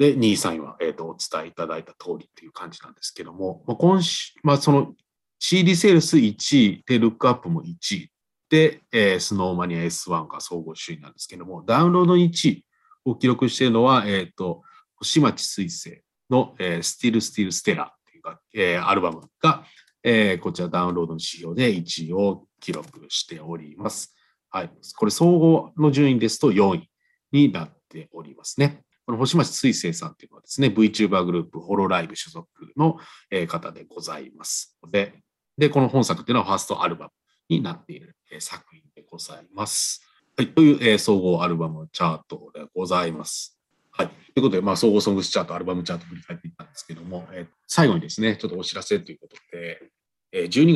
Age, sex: 40-59, male